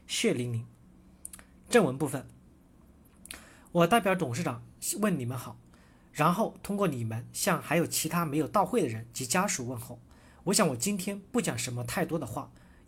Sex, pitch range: male, 120-185 Hz